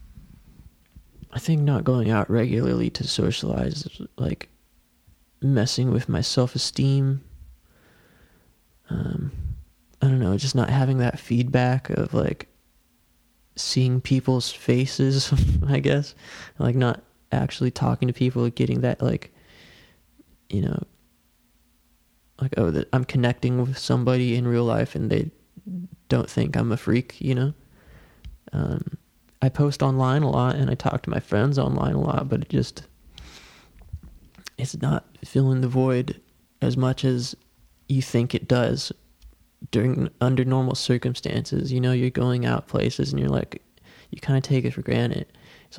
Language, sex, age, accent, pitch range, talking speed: English, male, 20-39, American, 80-135 Hz, 145 wpm